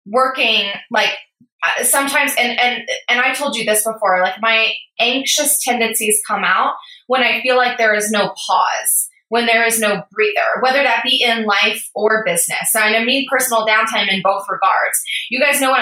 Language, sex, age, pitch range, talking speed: English, female, 20-39, 205-250 Hz, 185 wpm